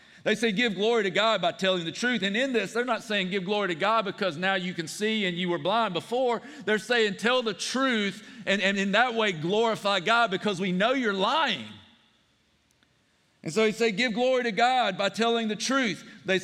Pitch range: 195-235 Hz